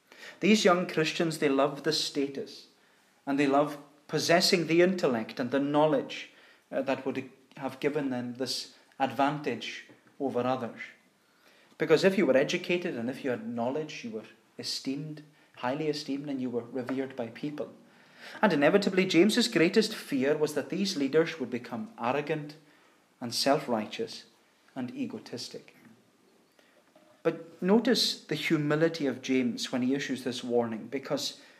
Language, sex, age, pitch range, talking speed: English, male, 30-49, 130-180 Hz, 140 wpm